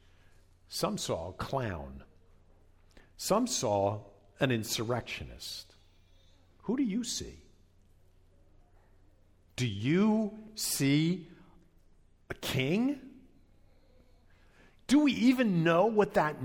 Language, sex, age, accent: English, male, 50-69, American